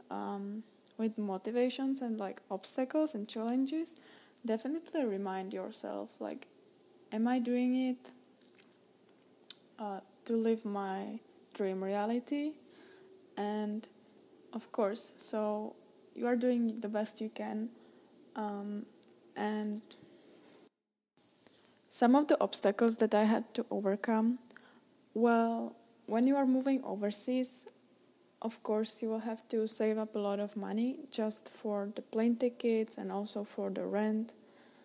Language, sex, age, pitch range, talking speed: English, female, 10-29, 210-245 Hz, 125 wpm